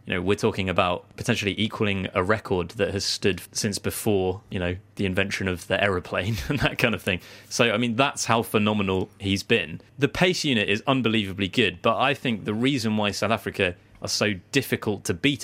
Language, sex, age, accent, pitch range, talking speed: English, male, 20-39, British, 95-115 Hz, 205 wpm